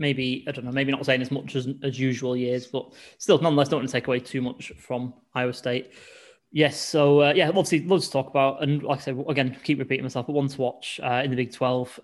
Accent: British